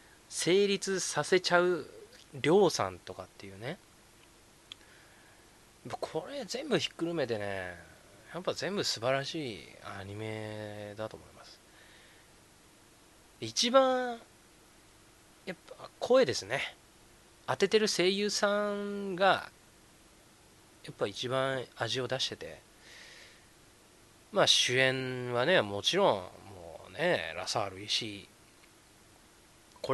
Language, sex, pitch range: Japanese, male, 100-150 Hz